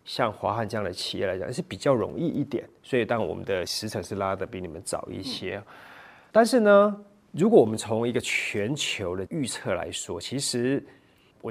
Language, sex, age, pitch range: Chinese, male, 30-49, 105-145 Hz